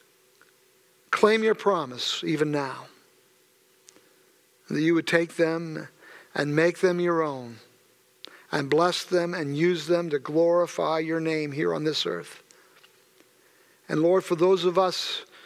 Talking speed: 135 wpm